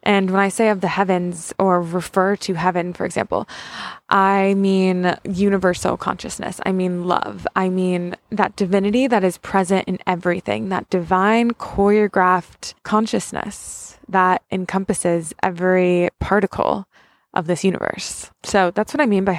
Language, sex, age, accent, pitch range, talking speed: English, female, 20-39, American, 190-225 Hz, 140 wpm